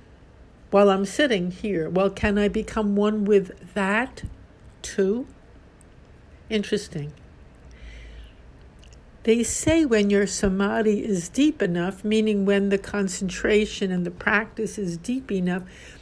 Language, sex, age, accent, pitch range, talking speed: English, female, 60-79, American, 180-225 Hz, 115 wpm